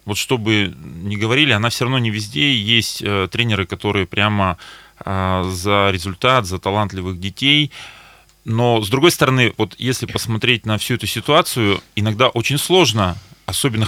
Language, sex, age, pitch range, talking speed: Russian, male, 20-39, 105-130 Hz, 150 wpm